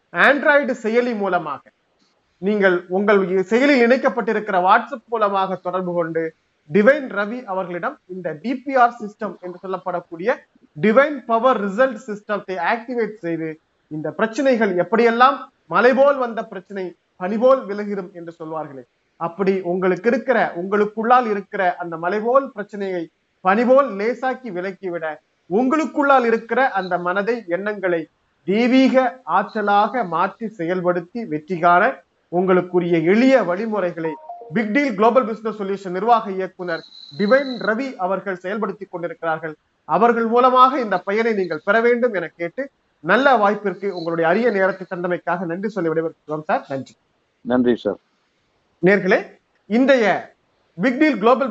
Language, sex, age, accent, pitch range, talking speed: Tamil, male, 30-49, native, 180-240 Hz, 110 wpm